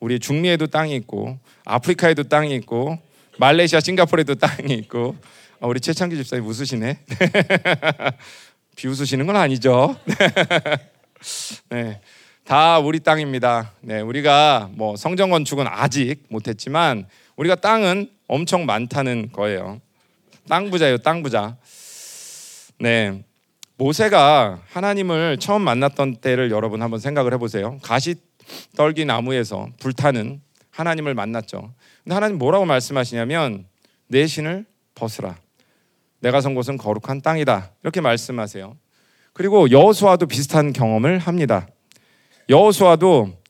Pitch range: 115-165 Hz